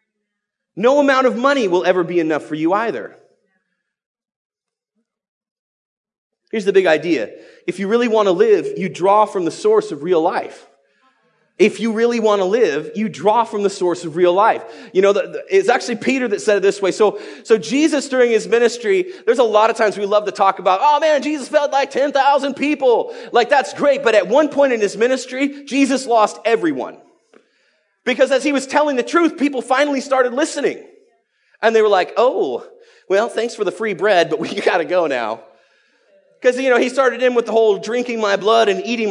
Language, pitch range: English, 205-300 Hz